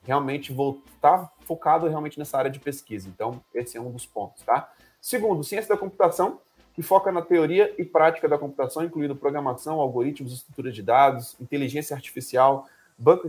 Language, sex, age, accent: English, male, 30-49, Brazilian